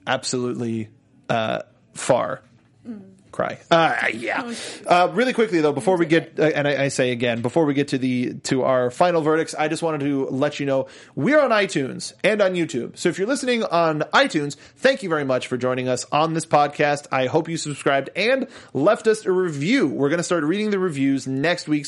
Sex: male